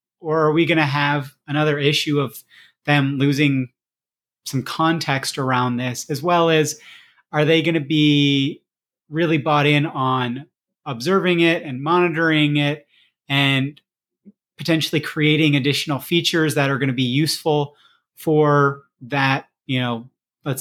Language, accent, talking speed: English, American, 130 wpm